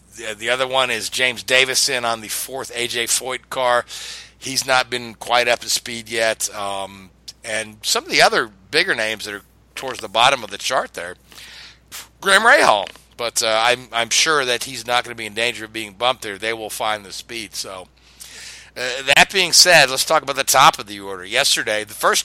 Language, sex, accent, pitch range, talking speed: English, male, American, 105-125 Hz, 210 wpm